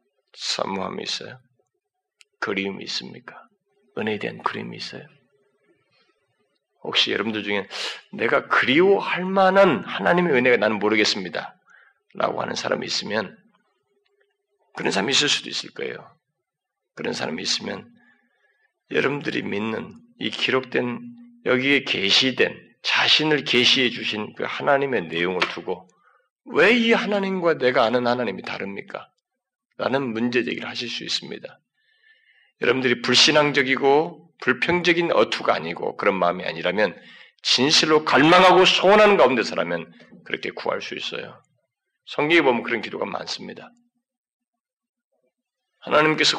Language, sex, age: Korean, male, 40-59